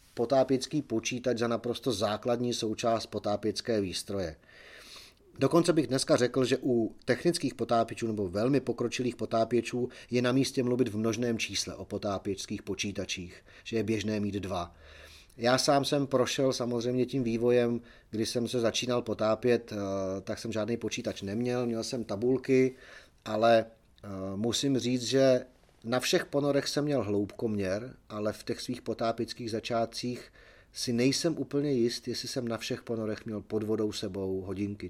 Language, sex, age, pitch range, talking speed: Czech, male, 30-49, 105-125 Hz, 145 wpm